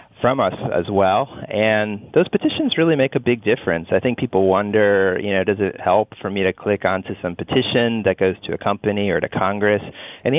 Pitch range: 90-105 Hz